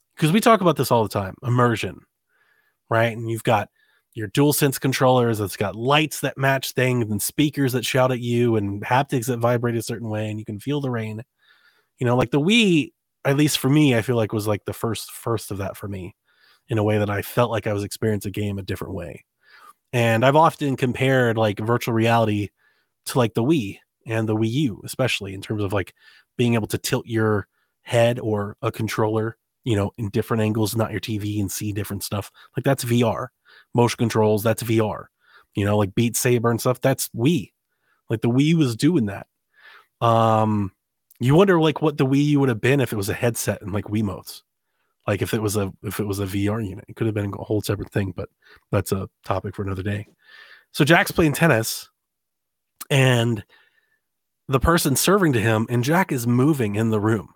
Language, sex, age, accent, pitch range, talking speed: English, male, 30-49, American, 105-130 Hz, 215 wpm